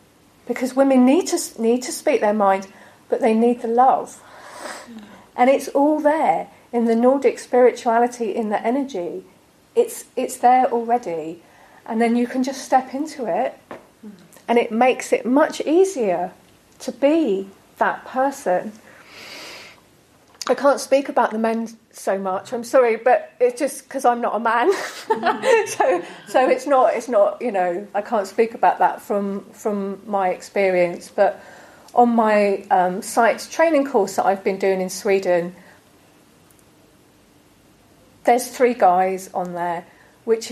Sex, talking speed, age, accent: female, 150 wpm, 40-59, British